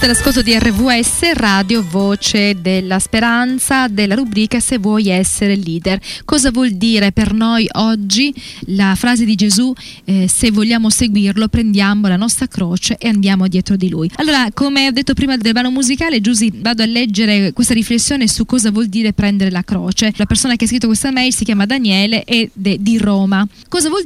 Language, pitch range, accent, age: Italian, 205-250 Hz, native, 20-39